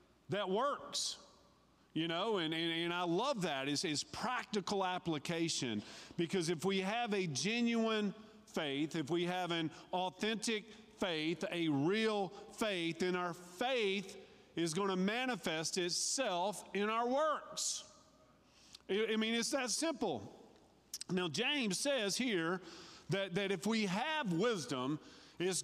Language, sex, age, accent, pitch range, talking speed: English, male, 40-59, American, 150-205 Hz, 135 wpm